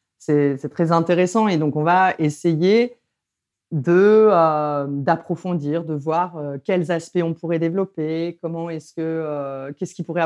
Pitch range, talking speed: 155-195 Hz, 160 wpm